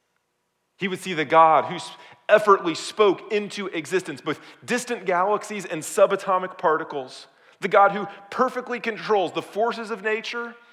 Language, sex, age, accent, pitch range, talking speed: English, male, 40-59, American, 155-215 Hz, 140 wpm